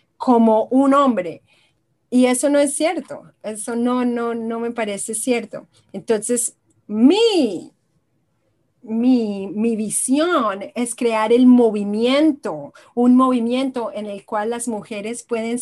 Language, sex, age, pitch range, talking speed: Spanish, female, 30-49, 200-245 Hz, 120 wpm